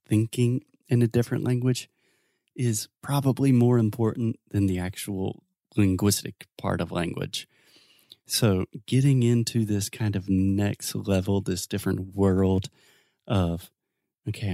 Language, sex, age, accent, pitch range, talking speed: Portuguese, male, 30-49, American, 100-125 Hz, 120 wpm